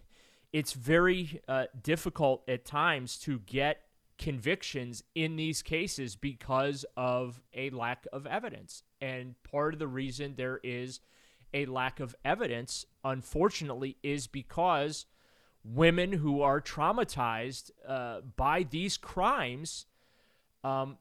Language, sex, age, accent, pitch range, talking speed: English, male, 30-49, American, 125-145 Hz, 115 wpm